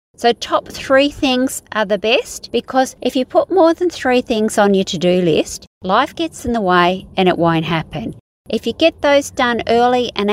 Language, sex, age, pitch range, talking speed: English, female, 50-69, 175-250 Hz, 205 wpm